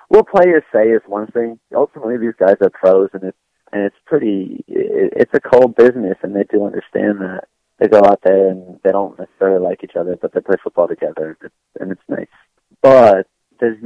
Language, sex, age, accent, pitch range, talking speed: English, male, 30-49, American, 95-120 Hz, 210 wpm